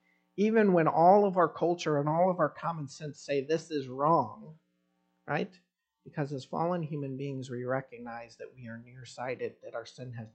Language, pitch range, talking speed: English, 115-155 Hz, 185 wpm